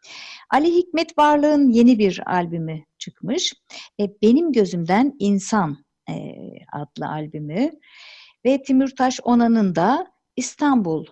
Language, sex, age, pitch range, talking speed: Turkish, female, 60-79, 170-250 Hz, 95 wpm